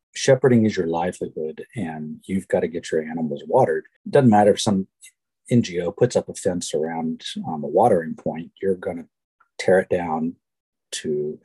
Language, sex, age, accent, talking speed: English, male, 50-69, American, 180 wpm